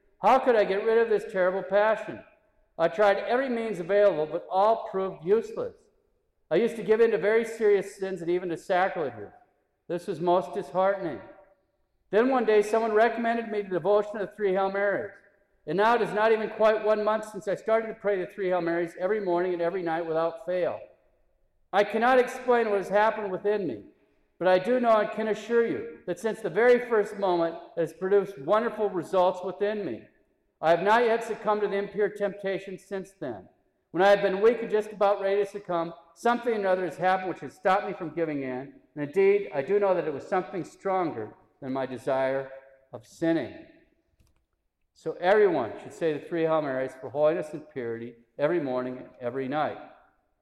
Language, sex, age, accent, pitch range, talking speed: English, male, 50-69, American, 175-220 Hz, 200 wpm